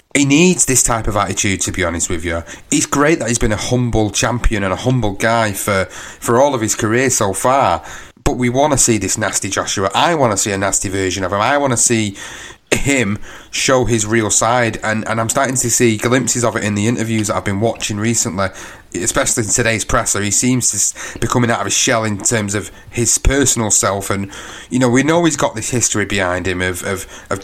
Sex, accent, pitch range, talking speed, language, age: male, British, 100-120 Hz, 235 wpm, English, 30-49